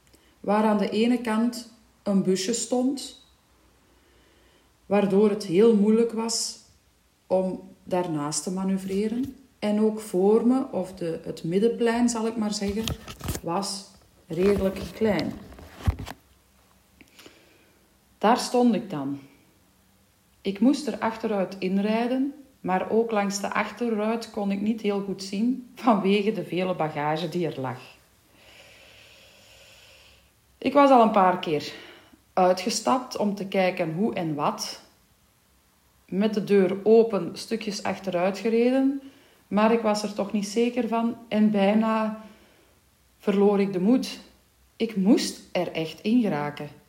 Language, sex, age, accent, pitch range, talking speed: Dutch, female, 40-59, Dutch, 180-225 Hz, 125 wpm